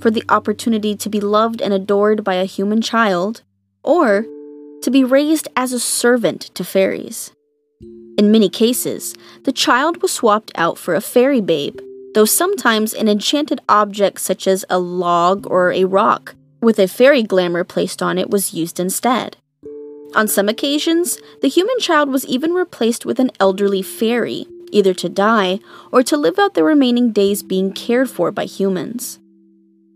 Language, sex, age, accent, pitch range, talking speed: English, female, 20-39, American, 180-250 Hz, 165 wpm